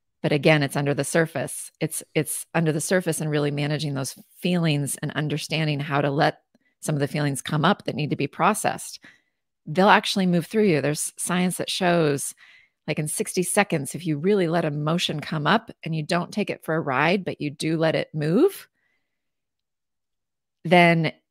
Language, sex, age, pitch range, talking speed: English, female, 30-49, 150-175 Hz, 190 wpm